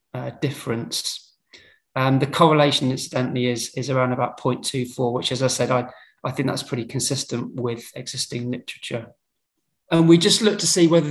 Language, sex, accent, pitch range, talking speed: English, male, British, 125-145 Hz, 165 wpm